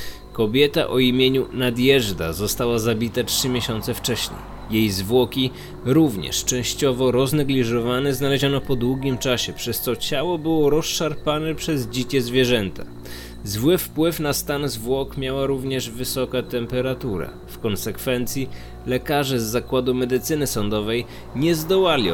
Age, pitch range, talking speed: 20-39, 110-145 Hz, 120 wpm